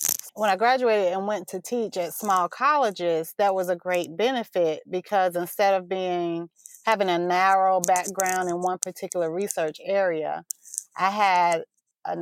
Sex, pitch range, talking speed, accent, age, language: female, 175-215 Hz, 150 wpm, American, 30-49, English